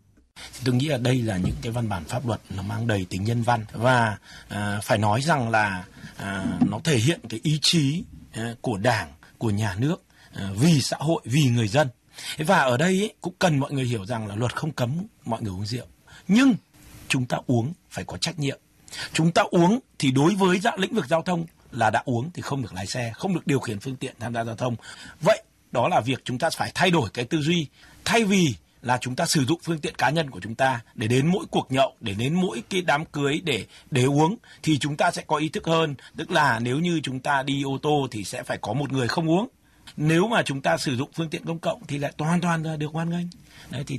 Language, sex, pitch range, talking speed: Vietnamese, male, 115-165 Hz, 240 wpm